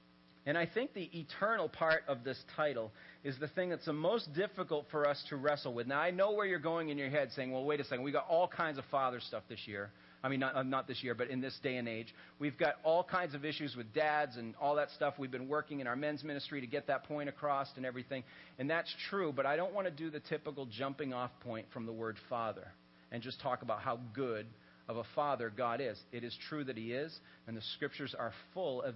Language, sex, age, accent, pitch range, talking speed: English, male, 40-59, American, 120-155 Hz, 255 wpm